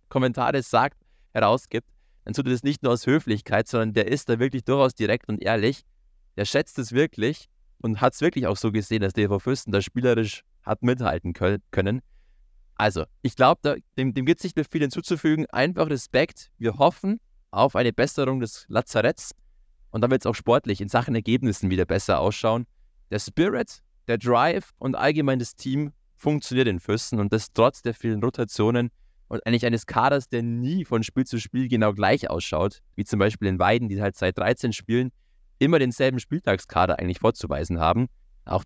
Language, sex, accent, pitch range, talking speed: German, male, German, 105-135 Hz, 180 wpm